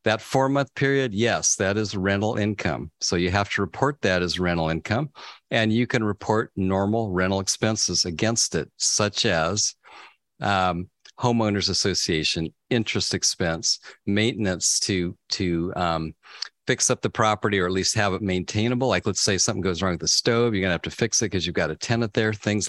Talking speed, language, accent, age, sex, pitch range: 185 wpm, English, American, 50-69, male, 90-115 Hz